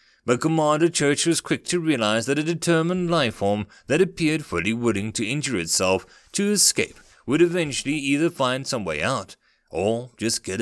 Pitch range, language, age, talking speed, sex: 115-165 Hz, English, 30-49, 175 wpm, male